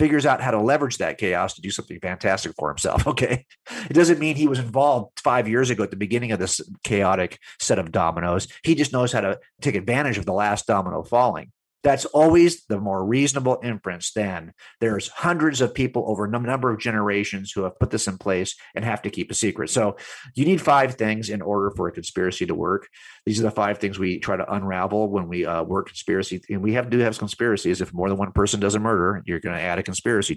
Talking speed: 235 wpm